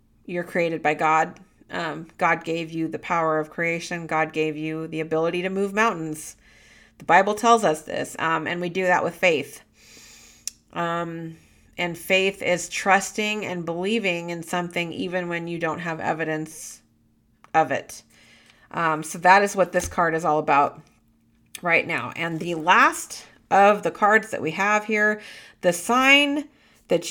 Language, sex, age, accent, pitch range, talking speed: English, female, 40-59, American, 160-205 Hz, 165 wpm